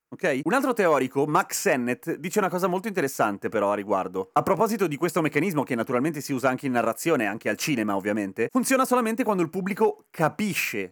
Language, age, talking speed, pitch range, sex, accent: Italian, 30-49, 200 wpm, 130-190 Hz, male, native